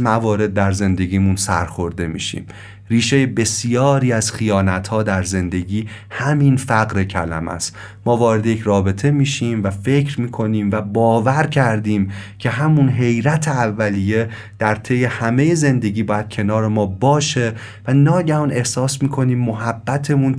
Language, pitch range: Persian, 105-130 Hz